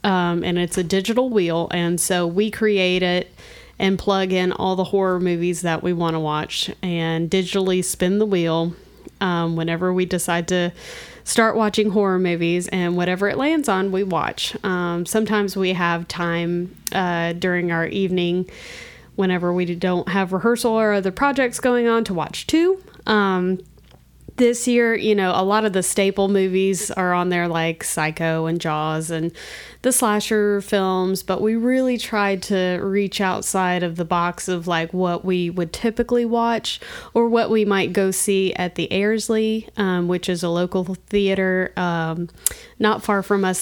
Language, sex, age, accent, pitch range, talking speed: English, female, 30-49, American, 175-210 Hz, 170 wpm